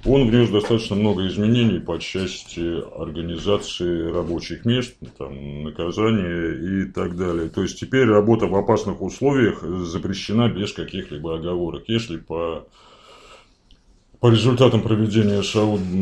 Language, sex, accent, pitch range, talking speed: Russian, male, native, 85-110 Hz, 115 wpm